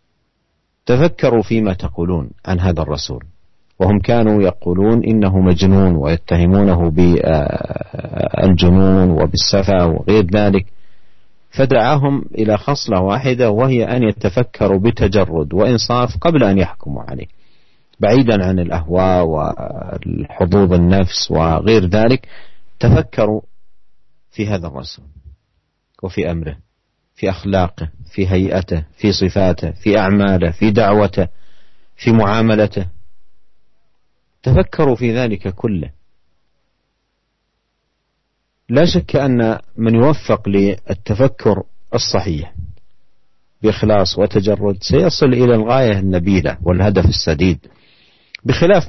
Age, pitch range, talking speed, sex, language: 50-69, 90-115 Hz, 90 wpm, male, Malay